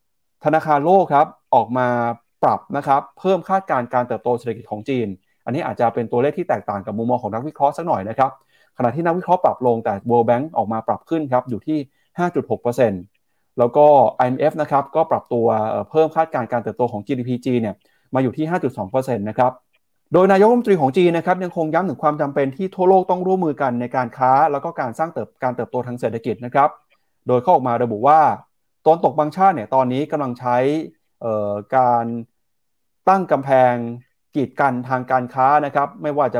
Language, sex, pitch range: Thai, male, 120-155 Hz